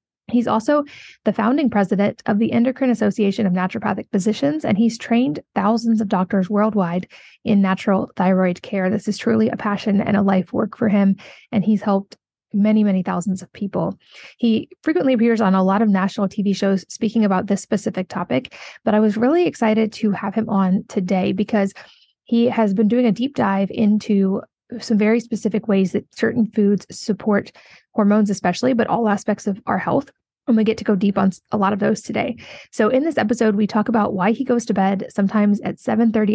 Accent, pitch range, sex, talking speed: American, 200-230 Hz, female, 195 wpm